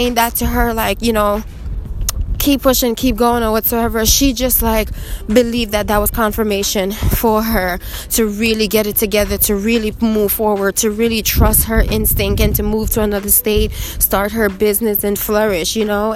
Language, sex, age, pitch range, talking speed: English, female, 20-39, 220-255 Hz, 180 wpm